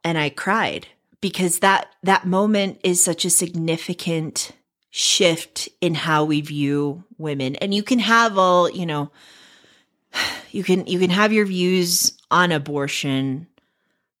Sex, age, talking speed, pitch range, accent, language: female, 30-49, 140 wpm, 150-185 Hz, American, English